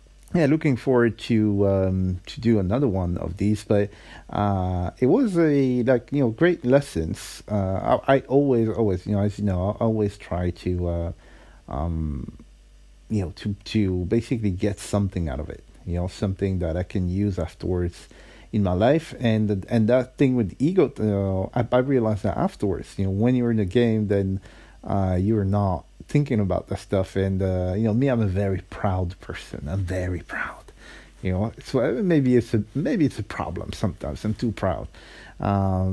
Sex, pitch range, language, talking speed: male, 95-120 Hz, English, 195 wpm